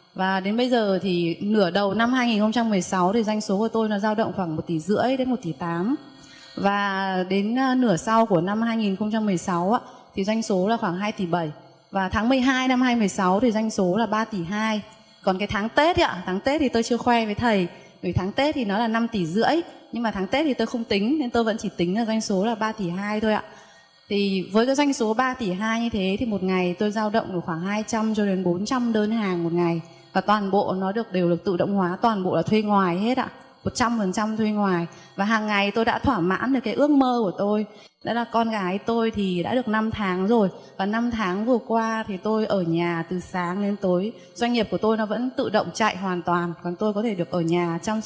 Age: 20-39